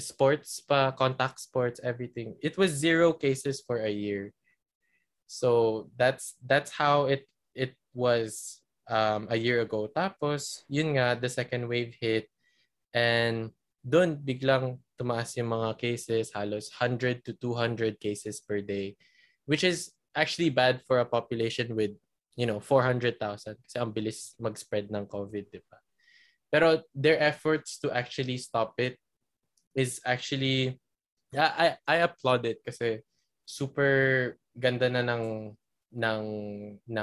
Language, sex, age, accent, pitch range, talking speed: Filipino, male, 20-39, native, 110-135 Hz, 130 wpm